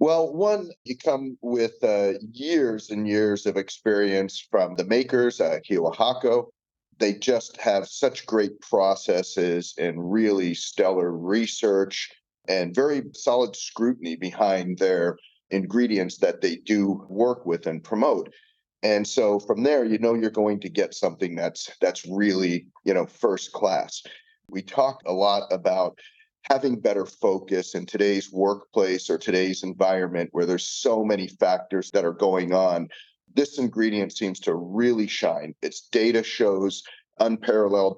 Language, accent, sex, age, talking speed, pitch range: English, American, male, 40-59, 145 wpm, 90-120 Hz